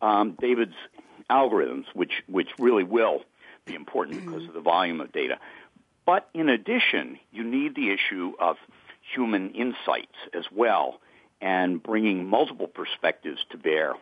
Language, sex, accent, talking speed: English, male, American, 140 wpm